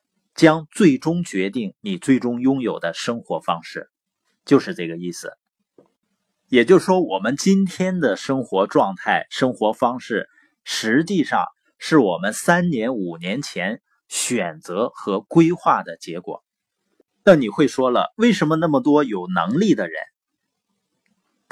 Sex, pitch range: male, 140-195 Hz